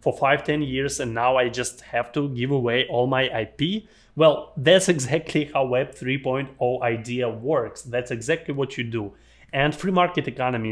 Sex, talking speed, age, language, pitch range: male, 180 wpm, 30-49, English, 120-145 Hz